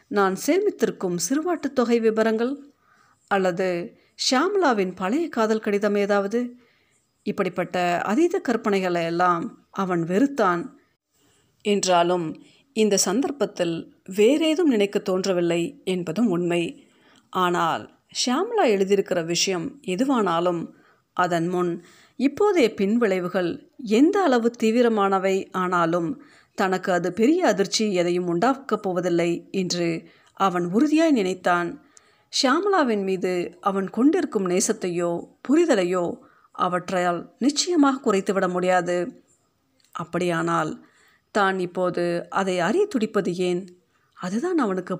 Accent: native